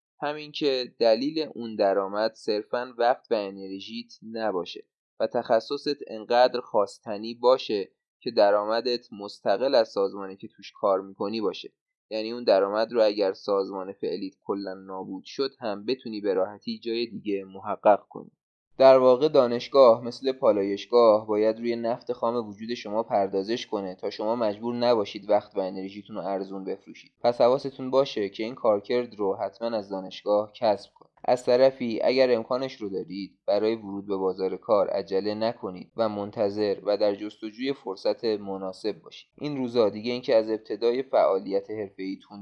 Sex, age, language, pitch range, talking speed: male, 20-39, Persian, 100-120 Hz, 150 wpm